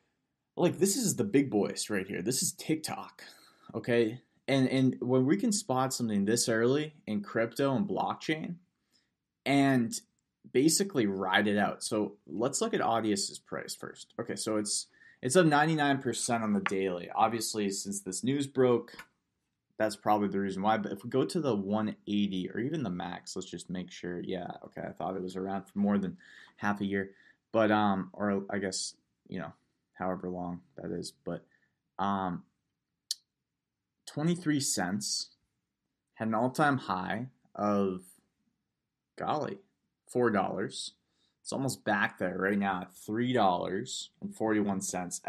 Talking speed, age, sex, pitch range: 150 wpm, 20-39, male, 100-130 Hz